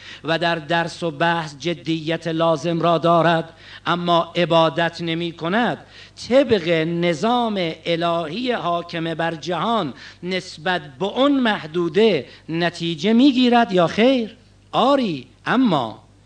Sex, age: male, 50-69